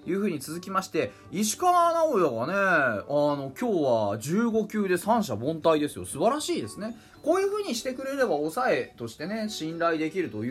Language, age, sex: Japanese, 20-39, male